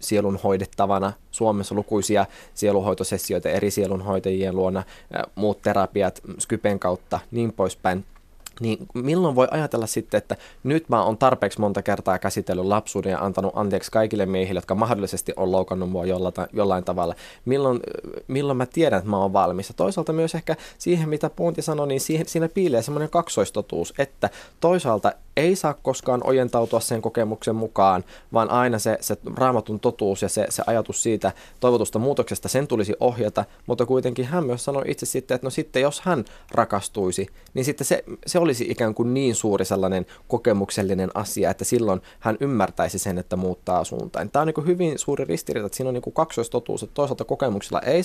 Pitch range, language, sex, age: 95-130 Hz, Finnish, male, 20-39